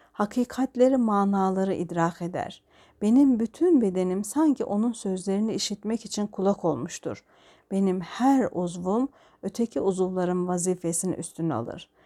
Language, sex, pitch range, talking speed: Turkish, female, 175-225 Hz, 110 wpm